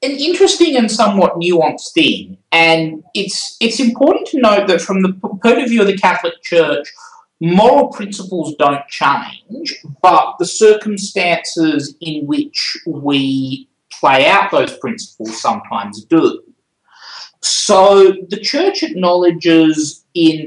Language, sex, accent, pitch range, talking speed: English, male, Australian, 145-215 Hz, 125 wpm